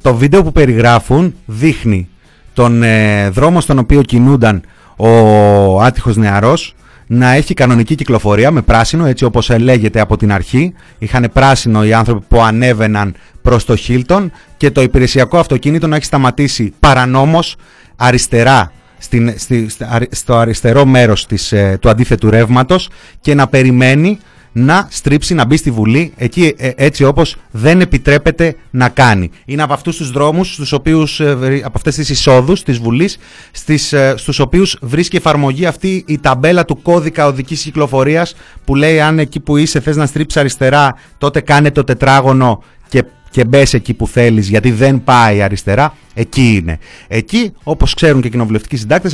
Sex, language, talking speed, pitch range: male, Greek, 155 wpm, 115-150 Hz